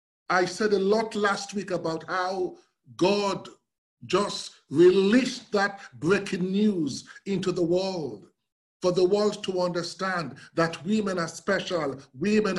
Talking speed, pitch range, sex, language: 130 wpm, 180-215 Hz, male, English